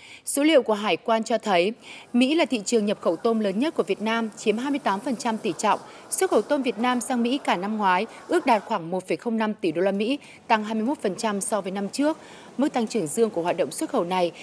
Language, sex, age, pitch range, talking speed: Vietnamese, female, 20-39, 195-250 Hz, 235 wpm